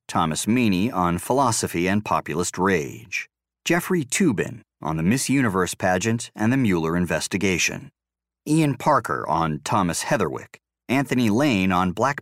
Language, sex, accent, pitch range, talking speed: English, male, American, 85-125 Hz, 135 wpm